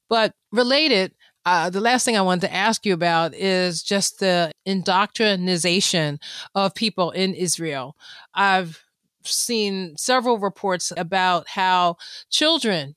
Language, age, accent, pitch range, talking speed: English, 30-49, American, 185-220 Hz, 125 wpm